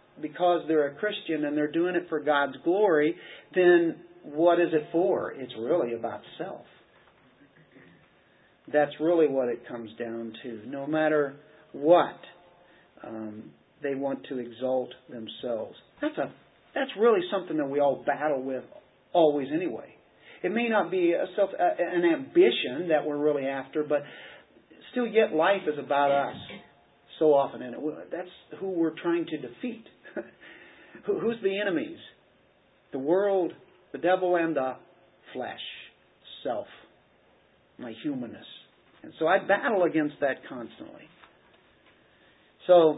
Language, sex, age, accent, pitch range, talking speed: English, male, 50-69, American, 145-190 Hz, 140 wpm